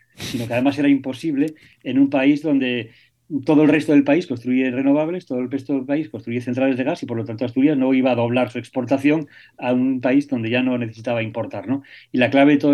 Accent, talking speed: Spanish, 235 wpm